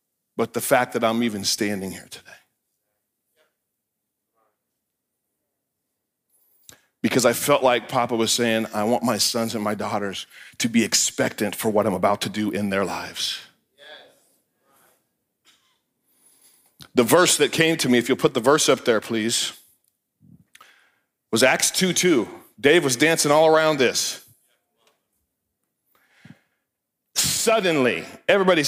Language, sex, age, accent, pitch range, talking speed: English, male, 40-59, American, 120-155 Hz, 125 wpm